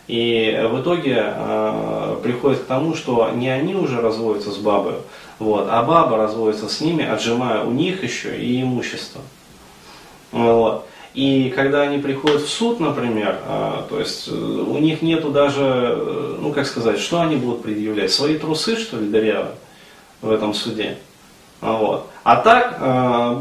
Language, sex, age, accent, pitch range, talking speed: Russian, male, 30-49, native, 110-155 Hz, 145 wpm